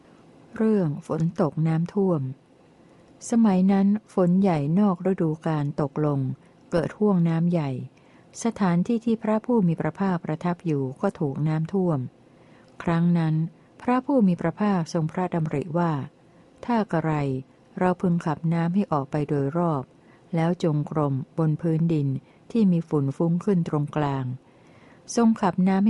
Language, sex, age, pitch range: Thai, female, 60-79, 150-185 Hz